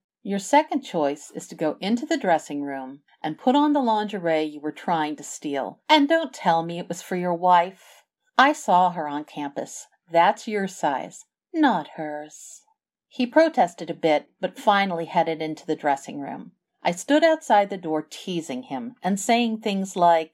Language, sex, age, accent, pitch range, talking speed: English, female, 50-69, American, 160-245 Hz, 180 wpm